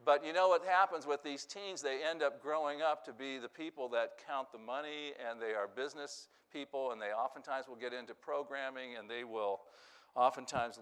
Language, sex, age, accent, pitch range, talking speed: English, male, 50-69, American, 120-145 Hz, 205 wpm